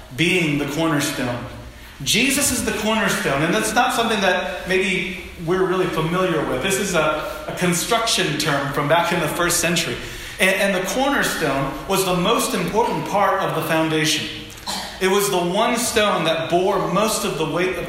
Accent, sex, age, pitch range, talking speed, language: American, male, 40-59, 155-210 Hz, 180 wpm, English